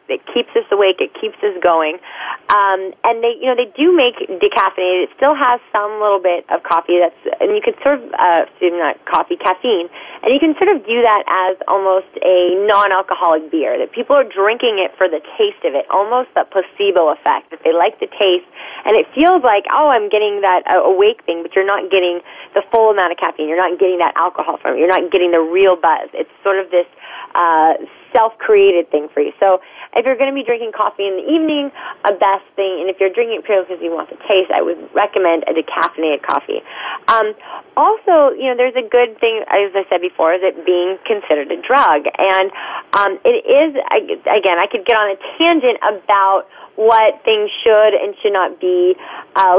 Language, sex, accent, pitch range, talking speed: English, female, American, 190-300 Hz, 215 wpm